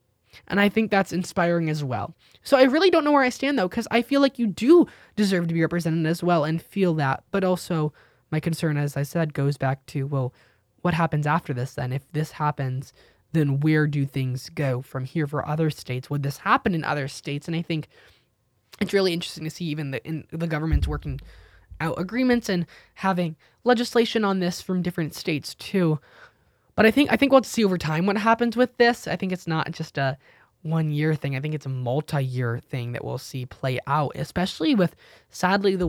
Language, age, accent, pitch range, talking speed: English, 20-39, American, 140-185 Hz, 215 wpm